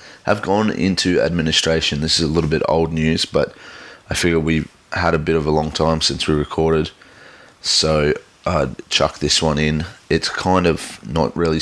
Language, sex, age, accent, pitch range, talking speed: English, male, 20-39, Australian, 80-90 Hz, 190 wpm